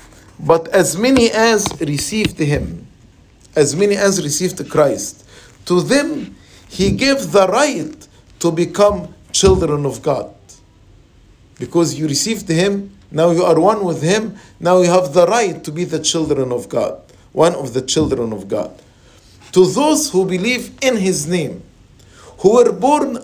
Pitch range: 135-190 Hz